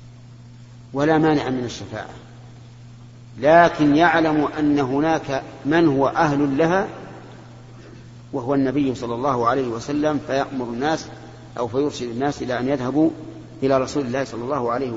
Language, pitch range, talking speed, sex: Arabic, 120-145 Hz, 130 wpm, male